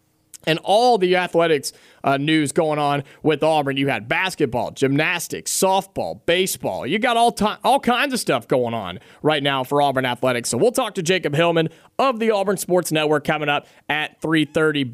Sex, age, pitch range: male, 30-49, 145-190 Hz